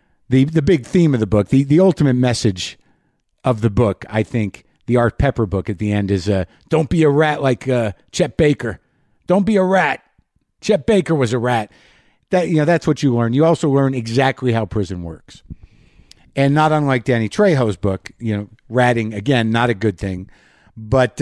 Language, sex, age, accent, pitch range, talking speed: English, male, 50-69, American, 110-150 Hz, 200 wpm